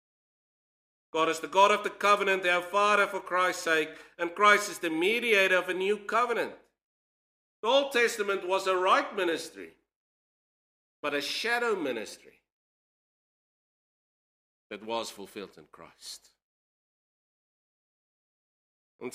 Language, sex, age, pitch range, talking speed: English, male, 50-69, 135-180 Hz, 120 wpm